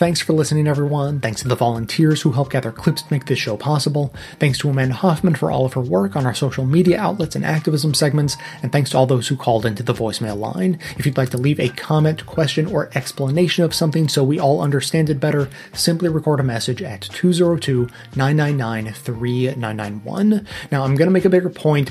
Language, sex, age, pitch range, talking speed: English, male, 30-49, 125-160 Hz, 210 wpm